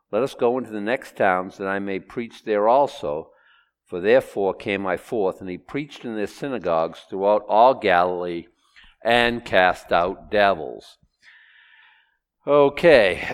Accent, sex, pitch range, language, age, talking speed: American, male, 100-135 Hz, English, 50-69, 145 wpm